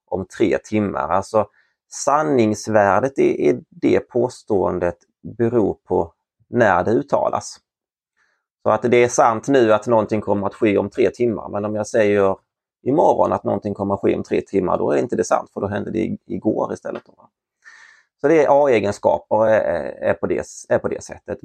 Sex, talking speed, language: male, 170 wpm, Swedish